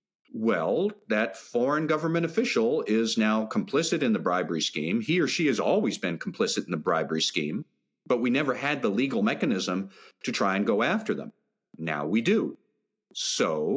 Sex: male